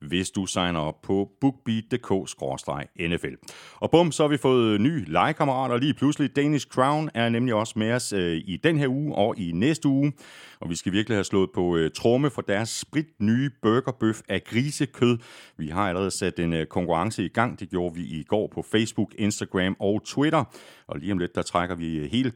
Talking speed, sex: 190 wpm, male